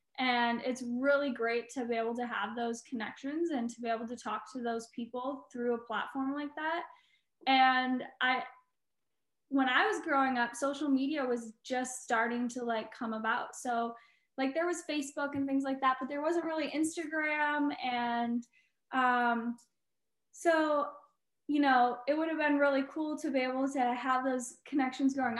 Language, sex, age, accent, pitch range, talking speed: English, female, 10-29, American, 235-275 Hz, 175 wpm